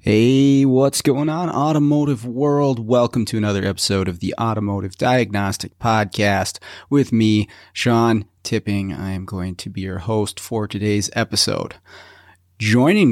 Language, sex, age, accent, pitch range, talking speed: English, male, 30-49, American, 95-120 Hz, 135 wpm